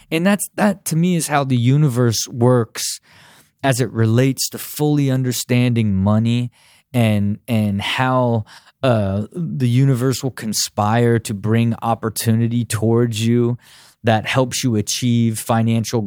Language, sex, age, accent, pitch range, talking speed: English, male, 20-39, American, 110-130 Hz, 130 wpm